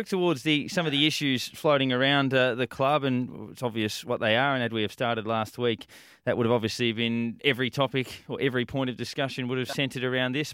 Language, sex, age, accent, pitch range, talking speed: English, male, 20-39, Australian, 110-135 Hz, 235 wpm